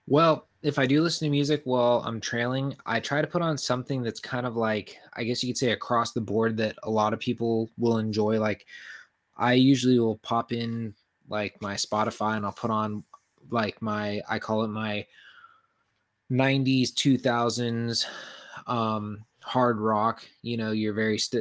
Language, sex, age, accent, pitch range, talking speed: English, male, 20-39, American, 110-125 Hz, 175 wpm